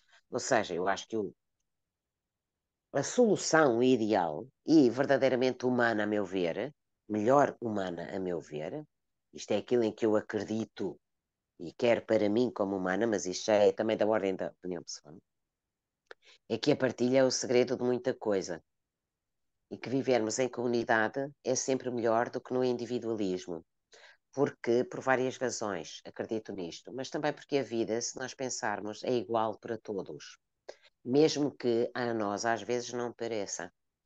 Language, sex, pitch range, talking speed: Portuguese, female, 105-130 Hz, 155 wpm